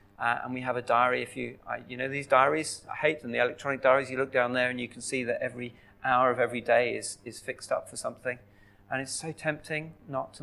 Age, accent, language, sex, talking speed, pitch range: 40-59, British, English, male, 260 wpm, 100-170 Hz